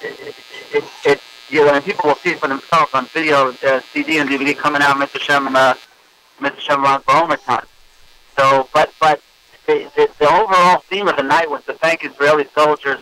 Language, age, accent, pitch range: English, 50-69, American, 140-180 Hz